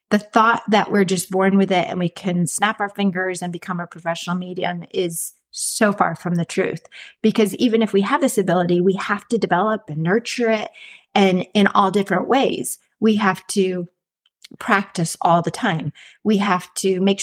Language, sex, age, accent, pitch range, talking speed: English, female, 30-49, American, 180-225 Hz, 190 wpm